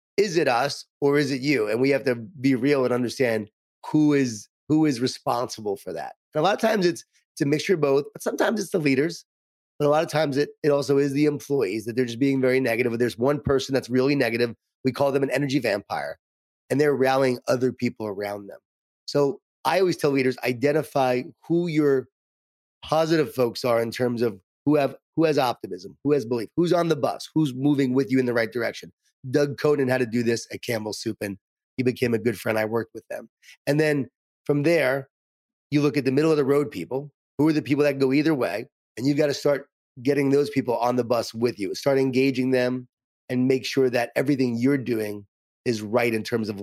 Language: English